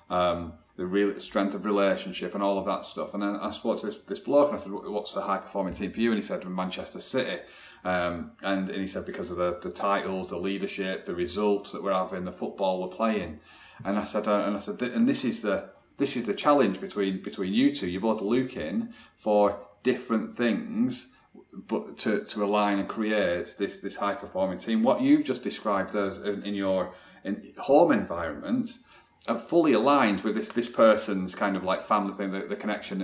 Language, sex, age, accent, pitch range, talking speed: English, male, 30-49, British, 100-140 Hz, 215 wpm